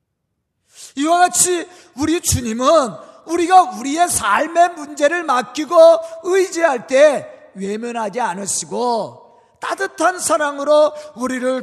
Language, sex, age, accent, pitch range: Korean, male, 40-59, native, 200-300 Hz